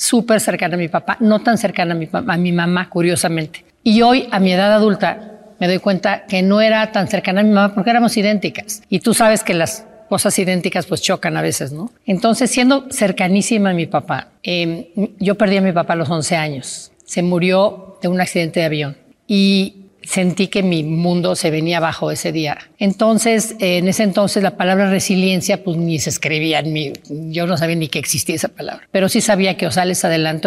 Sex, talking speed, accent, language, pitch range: female, 210 wpm, Mexican, Spanish, 175-210 Hz